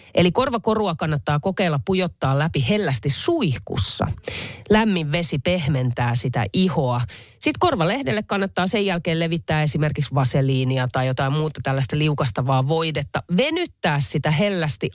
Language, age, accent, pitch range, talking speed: Finnish, 30-49, native, 130-190 Hz, 120 wpm